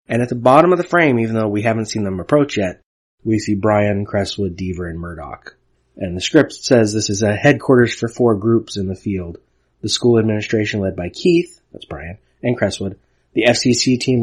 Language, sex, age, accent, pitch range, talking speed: English, male, 30-49, American, 95-120 Hz, 205 wpm